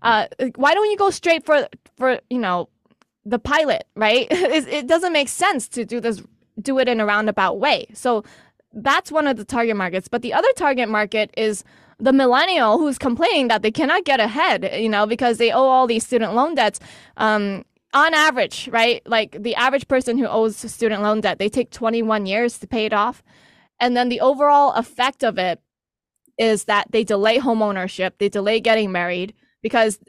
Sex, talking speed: female, 195 wpm